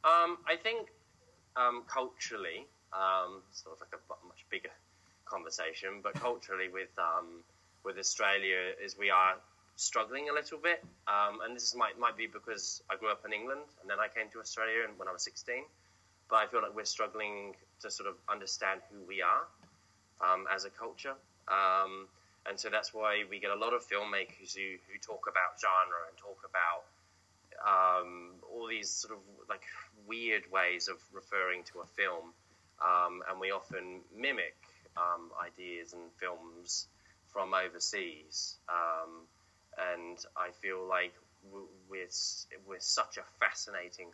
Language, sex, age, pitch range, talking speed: English, male, 10-29, 90-105 Hz, 160 wpm